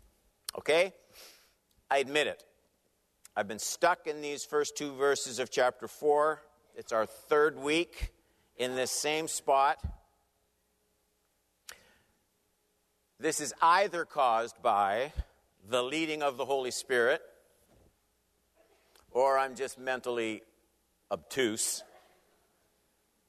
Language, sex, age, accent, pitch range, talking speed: English, male, 60-79, American, 110-155 Hz, 100 wpm